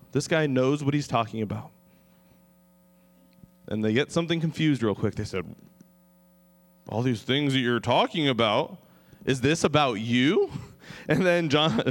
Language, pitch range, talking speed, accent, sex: English, 110-180 Hz, 150 wpm, American, male